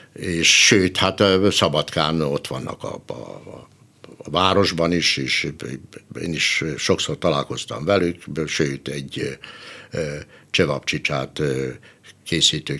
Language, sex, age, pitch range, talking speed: Hungarian, male, 60-79, 85-110 Hz, 105 wpm